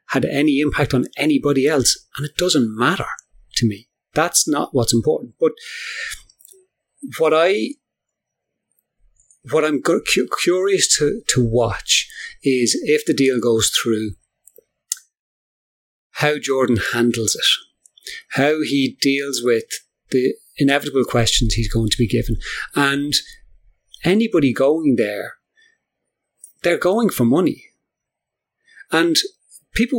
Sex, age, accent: male, 30-49, British